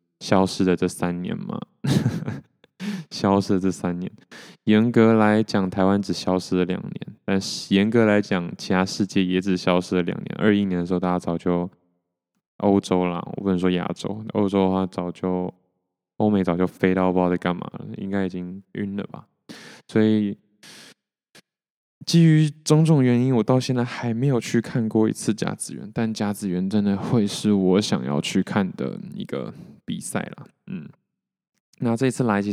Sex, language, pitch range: male, Chinese, 90-110 Hz